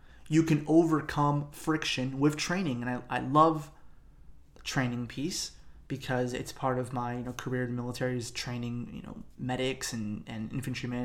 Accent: American